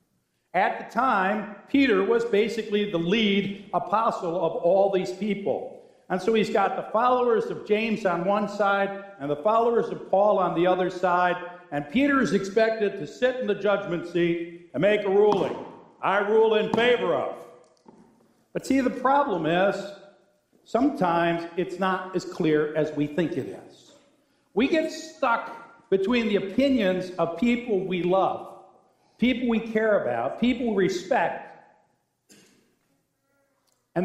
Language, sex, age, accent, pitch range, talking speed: English, male, 60-79, American, 170-225 Hz, 150 wpm